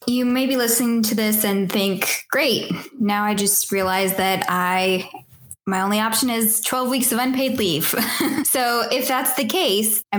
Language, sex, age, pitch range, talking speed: English, female, 10-29, 170-210 Hz, 175 wpm